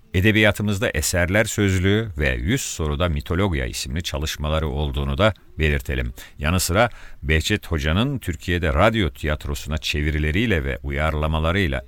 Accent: native